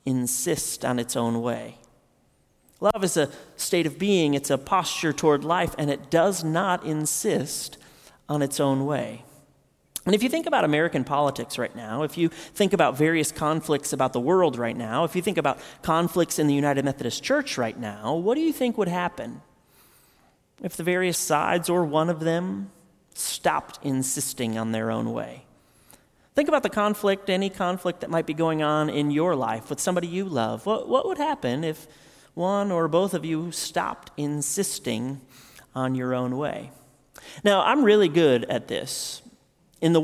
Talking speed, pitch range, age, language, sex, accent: 180 wpm, 135-175 Hz, 30-49, English, male, American